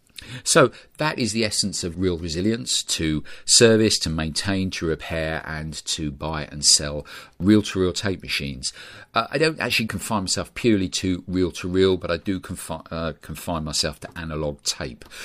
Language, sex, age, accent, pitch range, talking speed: English, male, 40-59, British, 75-95 Hz, 175 wpm